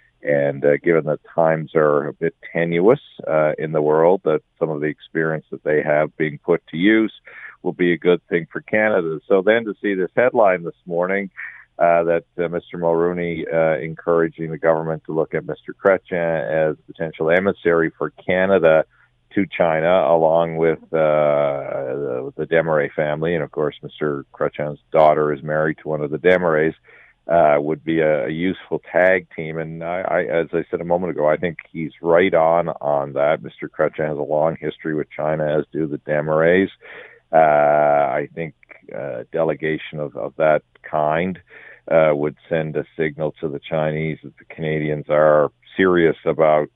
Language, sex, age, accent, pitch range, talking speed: English, male, 50-69, American, 75-85 Hz, 180 wpm